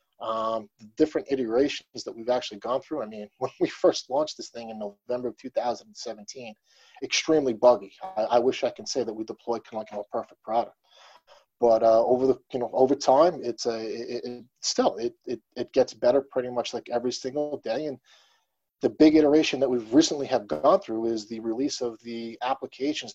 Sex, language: male, English